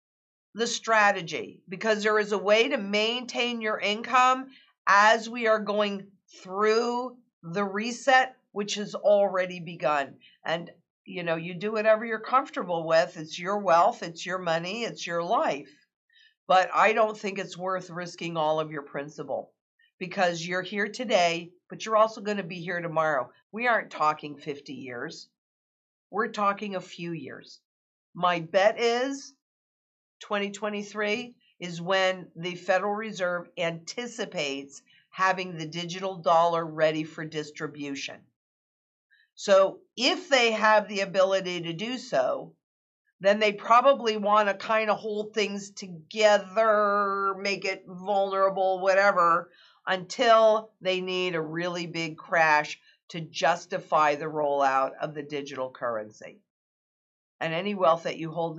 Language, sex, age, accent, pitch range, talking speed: English, female, 50-69, American, 170-215 Hz, 135 wpm